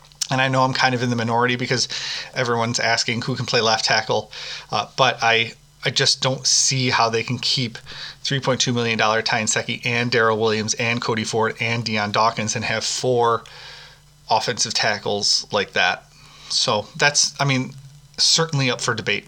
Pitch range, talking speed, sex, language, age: 115-140 Hz, 170 wpm, male, English, 30-49